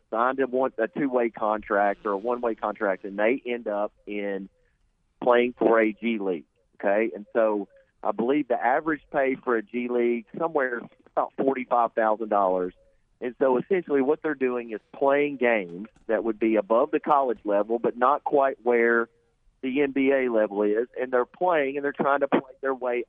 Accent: American